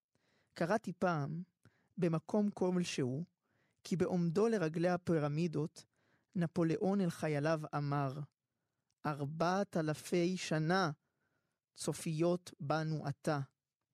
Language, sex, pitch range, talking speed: Hebrew, male, 150-185 Hz, 75 wpm